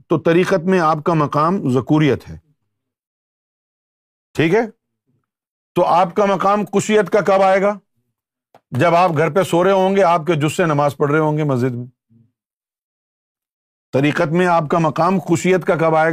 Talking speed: 170 wpm